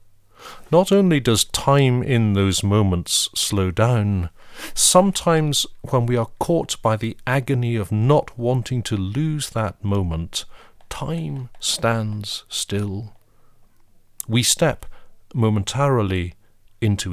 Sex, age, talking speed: male, 40-59, 110 wpm